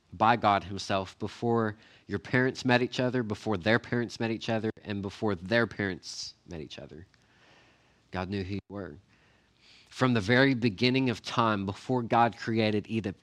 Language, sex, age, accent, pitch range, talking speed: English, male, 40-59, American, 100-135 Hz, 170 wpm